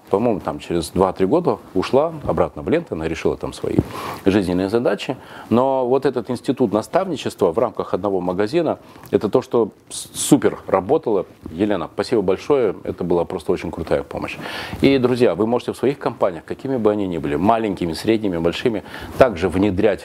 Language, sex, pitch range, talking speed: Russian, male, 95-125 Hz, 165 wpm